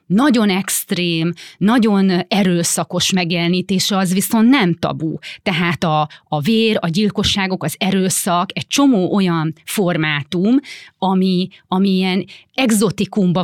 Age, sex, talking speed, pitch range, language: 30-49, female, 105 wpm, 165-215 Hz, Hungarian